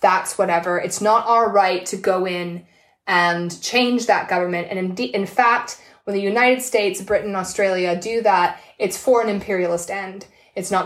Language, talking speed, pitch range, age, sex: English, 175 wpm, 180-210 Hz, 20-39, female